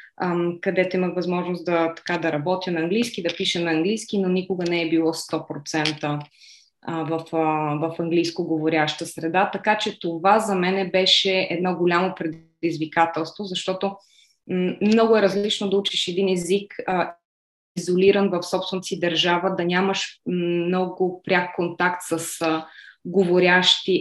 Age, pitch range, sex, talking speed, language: 20-39, 165-185 Hz, female, 130 wpm, Bulgarian